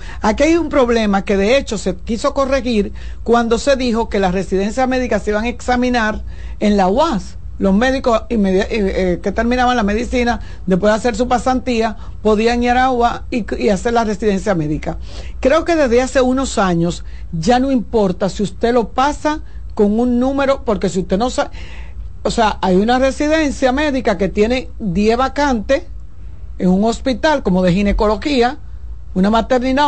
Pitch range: 205-260 Hz